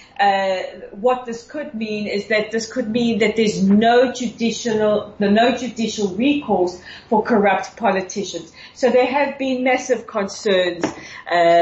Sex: female